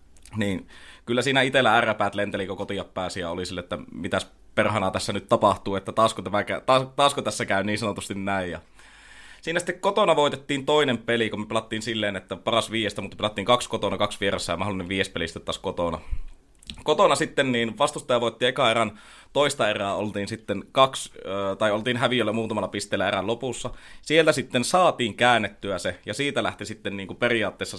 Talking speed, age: 180 wpm, 20-39